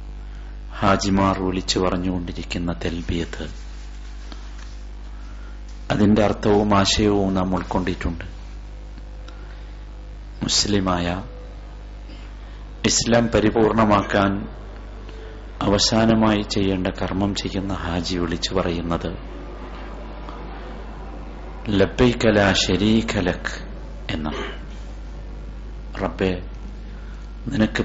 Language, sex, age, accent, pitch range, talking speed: Malayalam, male, 50-69, native, 80-100 Hz, 40 wpm